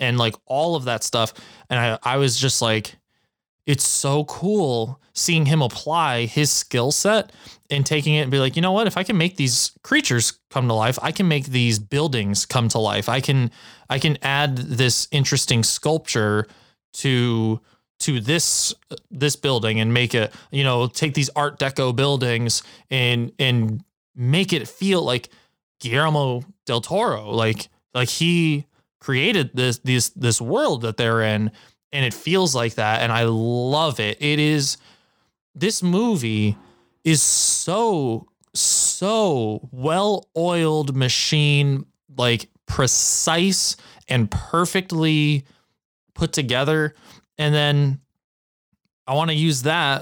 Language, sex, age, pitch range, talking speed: English, male, 20-39, 120-155 Hz, 145 wpm